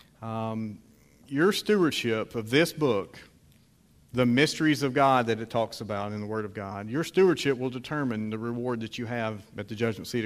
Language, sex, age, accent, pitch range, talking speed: English, male, 40-59, American, 110-130 Hz, 185 wpm